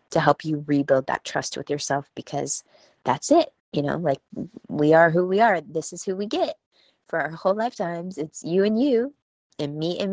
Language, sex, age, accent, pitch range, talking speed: English, female, 20-39, American, 140-175 Hz, 205 wpm